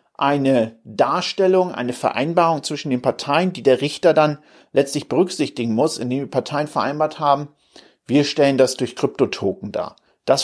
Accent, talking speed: German, 150 wpm